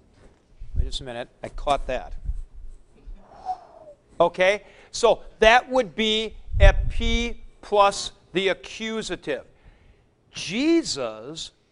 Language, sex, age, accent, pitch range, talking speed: English, male, 50-69, American, 175-225 Hz, 85 wpm